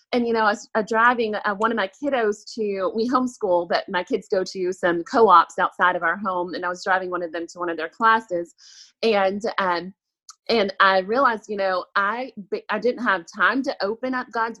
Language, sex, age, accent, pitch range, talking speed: English, female, 30-49, American, 195-240 Hz, 215 wpm